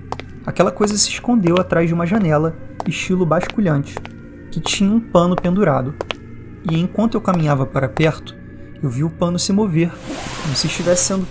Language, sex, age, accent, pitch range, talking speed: Portuguese, male, 20-39, Brazilian, 140-175 Hz, 165 wpm